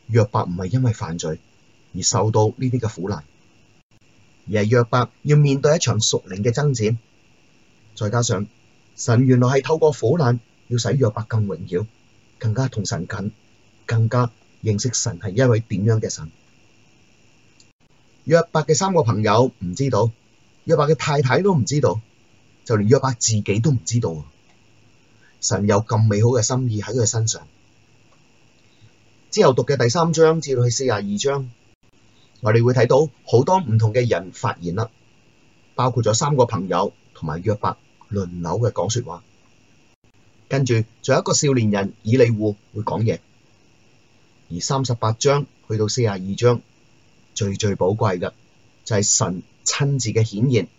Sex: male